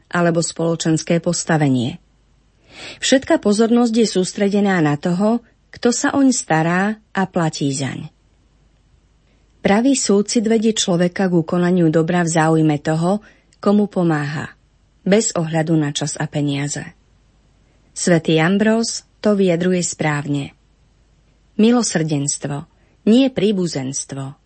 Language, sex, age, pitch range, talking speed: Slovak, female, 30-49, 155-200 Hz, 105 wpm